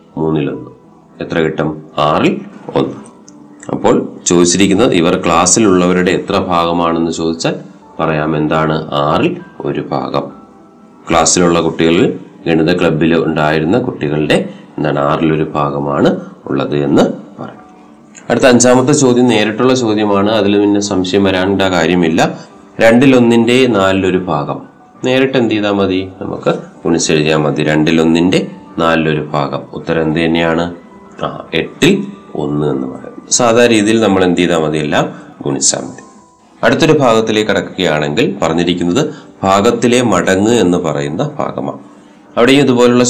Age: 30-49